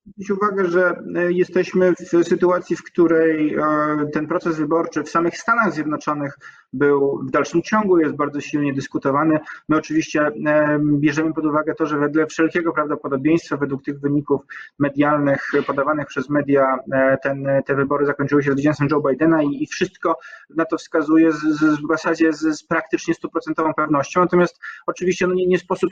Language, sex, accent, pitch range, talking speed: Polish, male, native, 140-165 Hz, 160 wpm